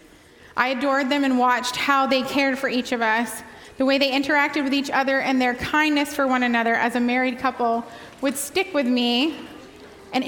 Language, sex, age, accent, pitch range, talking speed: English, female, 20-39, American, 245-300 Hz, 200 wpm